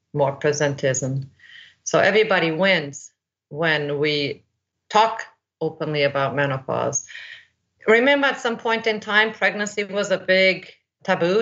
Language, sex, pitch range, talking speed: English, female, 150-190 Hz, 115 wpm